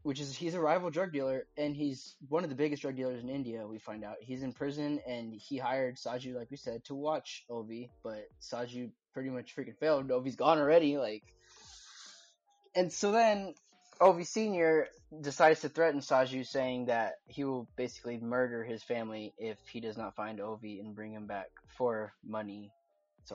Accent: American